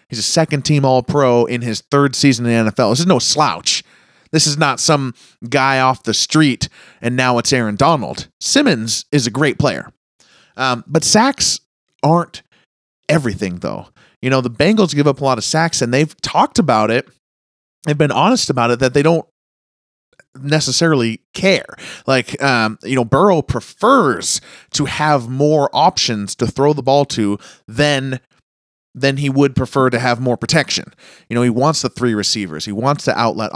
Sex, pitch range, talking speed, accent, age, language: male, 120-145 Hz, 175 wpm, American, 30-49, English